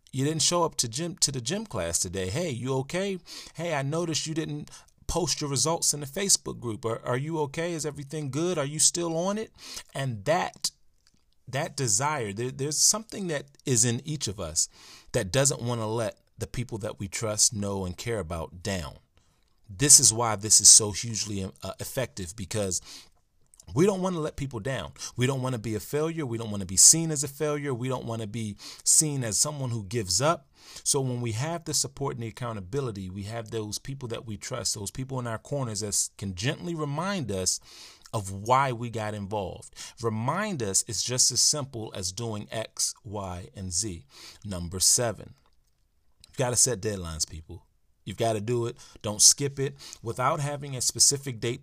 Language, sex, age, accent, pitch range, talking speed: English, male, 30-49, American, 105-145 Hz, 200 wpm